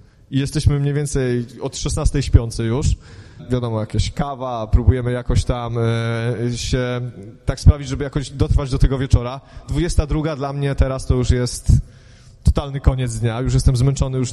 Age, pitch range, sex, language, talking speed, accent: 20-39, 115-140 Hz, male, Polish, 155 wpm, native